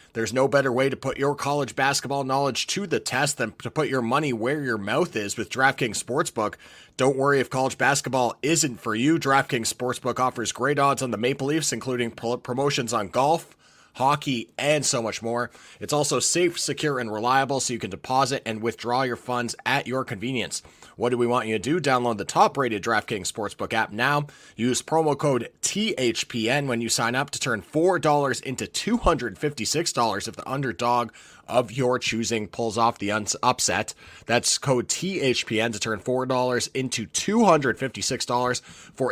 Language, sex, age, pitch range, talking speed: English, male, 30-49, 115-140 Hz, 185 wpm